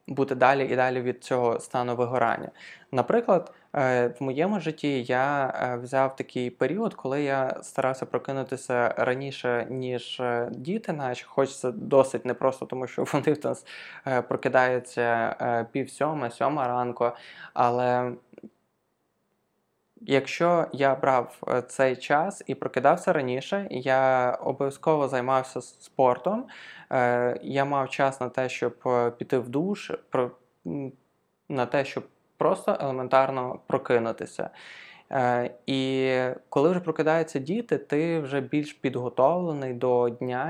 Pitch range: 125-150 Hz